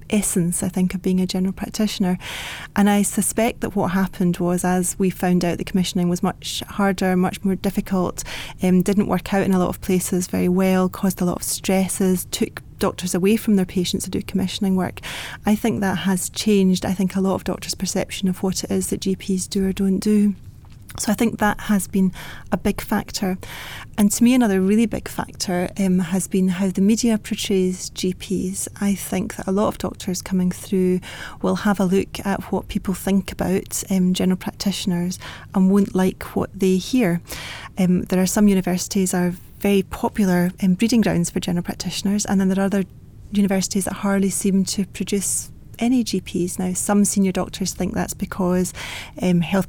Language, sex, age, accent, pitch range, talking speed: English, female, 30-49, British, 185-200 Hz, 195 wpm